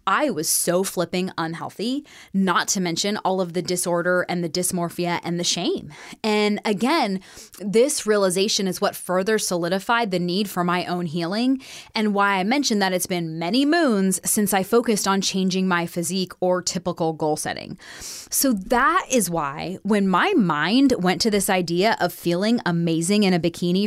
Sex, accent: female, American